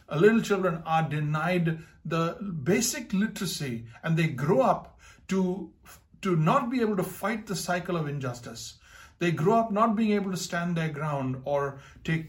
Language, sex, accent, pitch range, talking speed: English, male, Indian, 150-205 Hz, 165 wpm